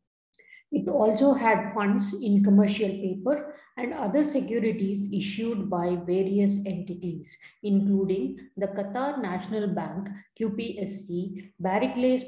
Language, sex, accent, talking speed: English, female, Indian, 105 wpm